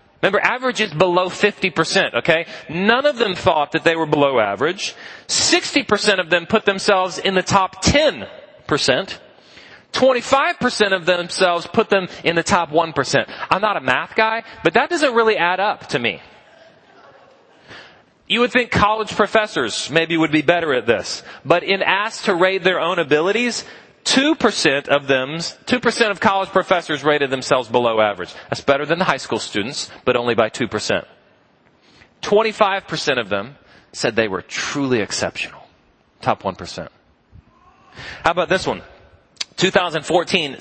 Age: 30-49